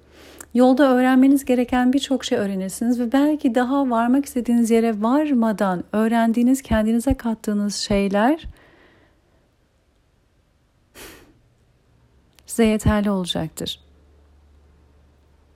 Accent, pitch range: native, 165-245 Hz